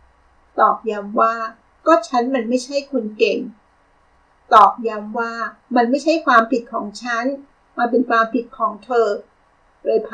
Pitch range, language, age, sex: 215-265 Hz, Thai, 60-79, female